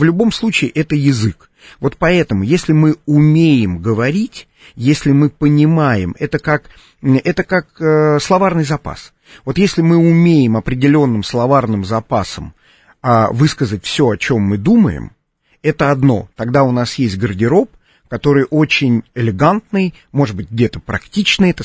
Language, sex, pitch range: Russian, male, 110-165 Hz